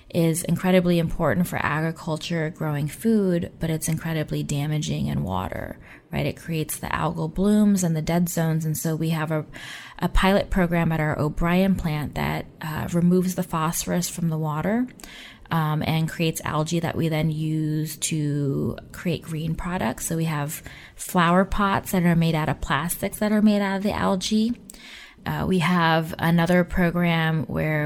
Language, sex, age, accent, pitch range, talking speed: English, female, 20-39, American, 160-185 Hz, 170 wpm